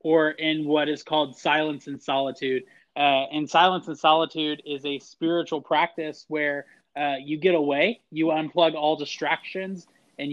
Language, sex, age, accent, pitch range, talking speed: English, male, 20-39, American, 140-155 Hz, 155 wpm